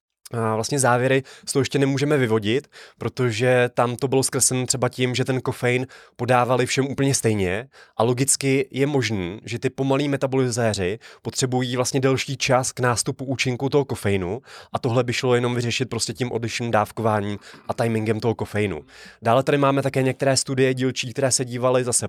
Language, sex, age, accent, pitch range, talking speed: Czech, male, 20-39, native, 110-130 Hz, 175 wpm